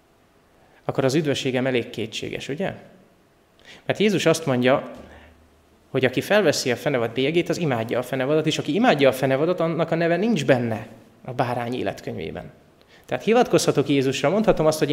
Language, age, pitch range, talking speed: Hungarian, 30-49, 120-145 Hz, 155 wpm